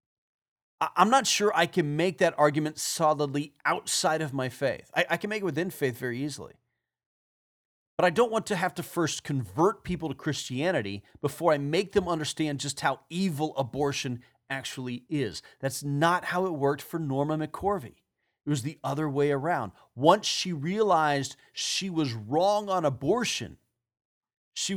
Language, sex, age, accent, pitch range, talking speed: English, male, 40-59, American, 130-180 Hz, 165 wpm